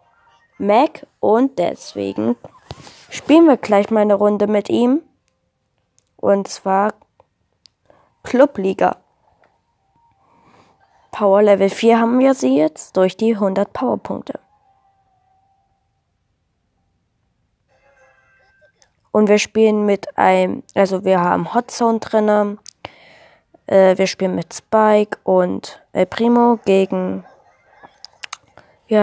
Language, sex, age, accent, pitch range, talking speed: English, female, 20-39, German, 195-235 Hz, 95 wpm